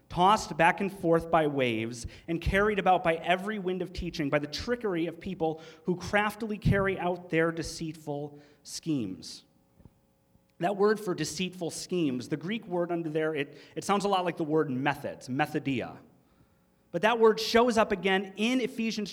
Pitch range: 165-215 Hz